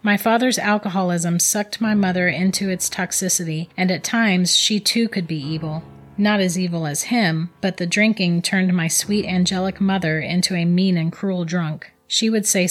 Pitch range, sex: 170-205 Hz, female